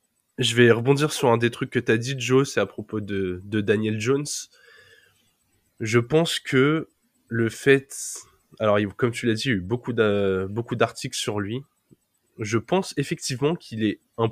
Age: 20-39